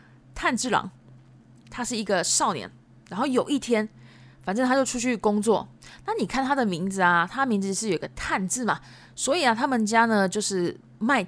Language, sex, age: Japanese, female, 20-39